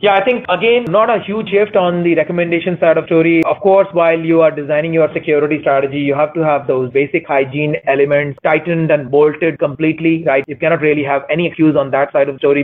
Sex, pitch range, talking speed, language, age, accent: male, 140-170 Hz, 225 wpm, English, 30-49, Indian